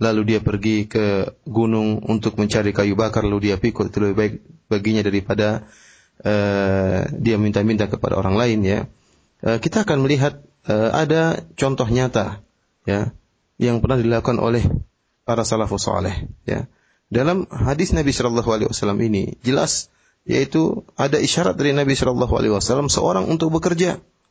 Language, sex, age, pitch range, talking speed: Indonesian, male, 30-49, 110-145 Hz, 135 wpm